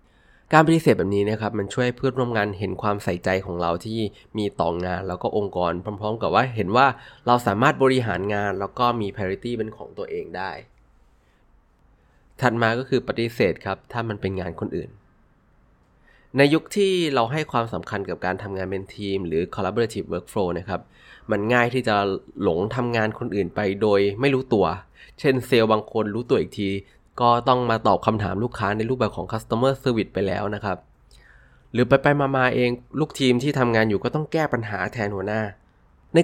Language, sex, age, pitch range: Thai, male, 20-39, 100-125 Hz